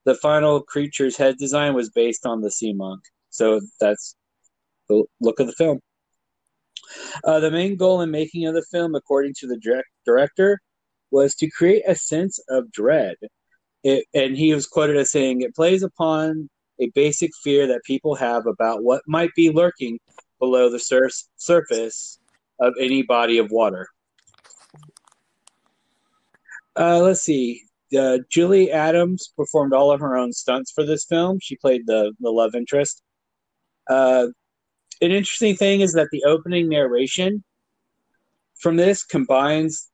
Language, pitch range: English, 125-170 Hz